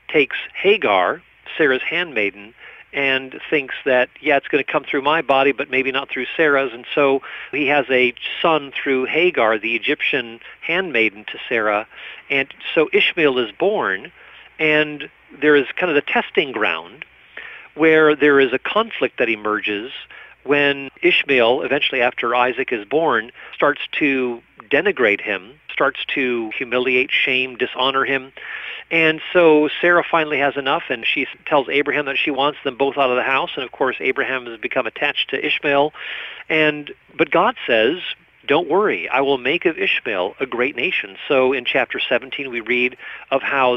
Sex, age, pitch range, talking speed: male, 50-69, 125-150 Hz, 165 wpm